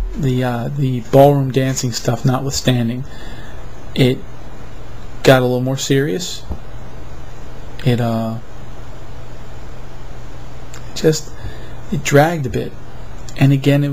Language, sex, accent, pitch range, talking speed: English, male, American, 120-140 Hz, 95 wpm